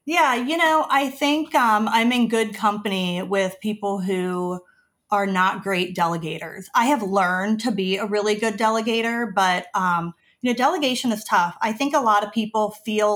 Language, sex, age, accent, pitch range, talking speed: English, female, 30-49, American, 195-245 Hz, 180 wpm